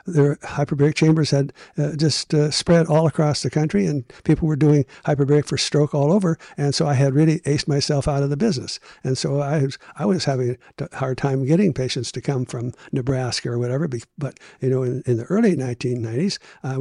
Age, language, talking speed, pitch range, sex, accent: 60-79, English, 210 wpm, 130-155 Hz, male, American